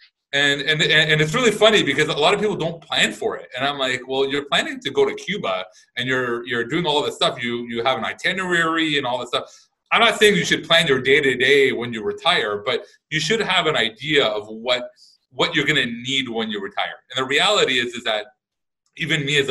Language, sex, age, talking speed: English, male, 30-49, 235 wpm